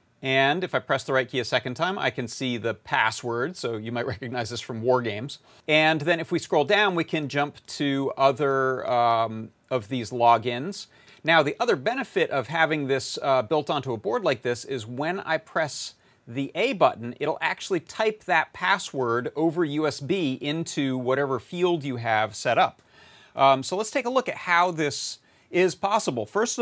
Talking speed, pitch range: 190 wpm, 125-170 Hz